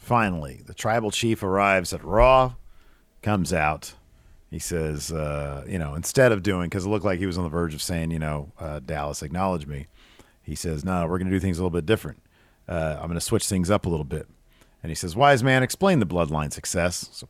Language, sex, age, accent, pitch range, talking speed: English, male, 40-59, American, 85-125 Hz, 220 wpm